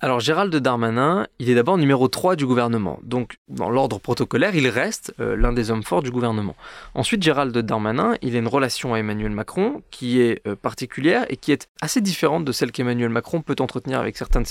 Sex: male